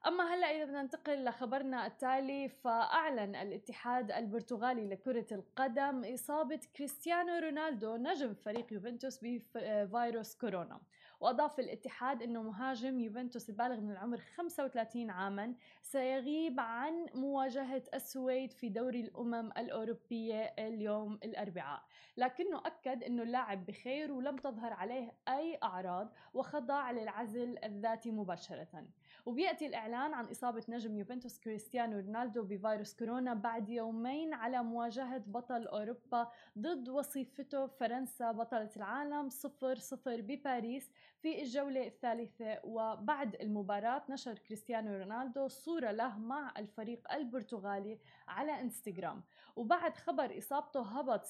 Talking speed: 115 wpm